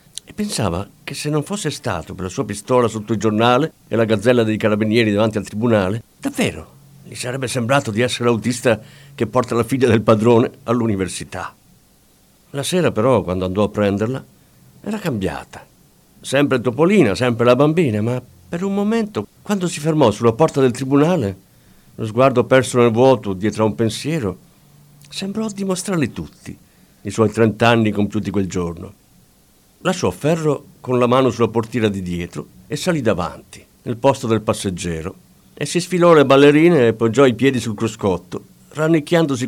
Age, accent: 50-69, native